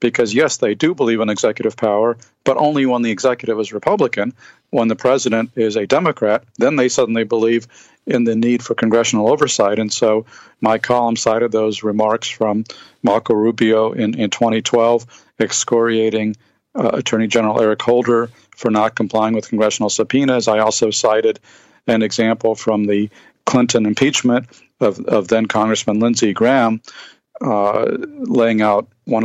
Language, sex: English, male